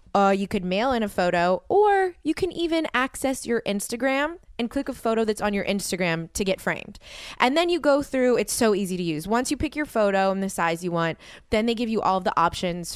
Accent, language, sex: American, English, female